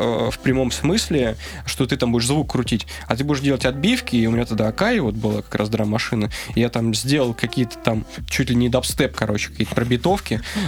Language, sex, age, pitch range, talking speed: Russian, male, 20-39, 110-135 Hz, 210 wpm